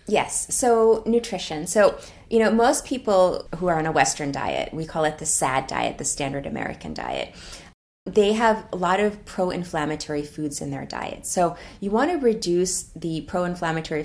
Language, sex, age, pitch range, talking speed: English, female, 30-49, 150-185 Hz, 175 wpm